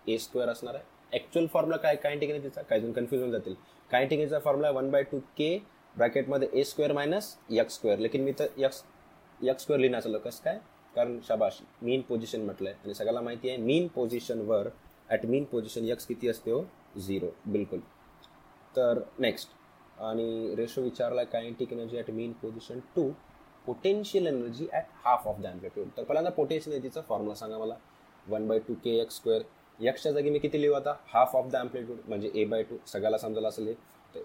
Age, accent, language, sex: 20-39, native, Hindi, male